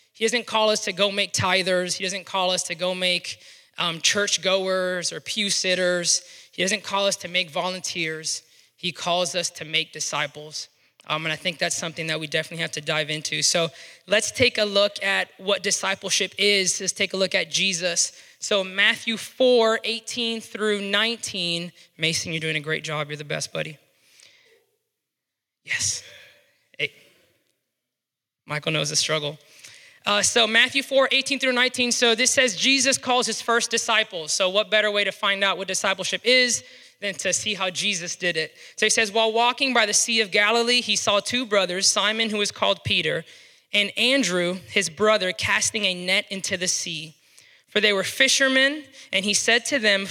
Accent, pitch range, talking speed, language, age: American, 175-220 Hz, 185 wpm, English, 20-39